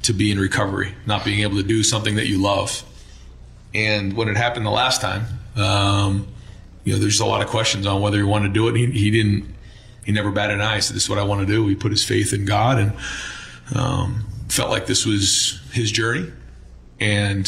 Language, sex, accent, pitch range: English, male, American, 100-115 Hz